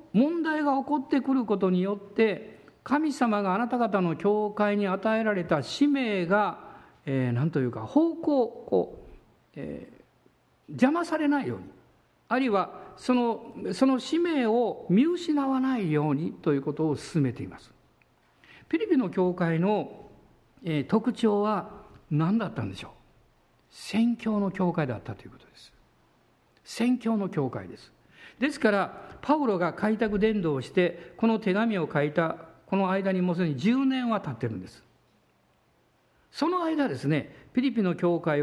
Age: 50-69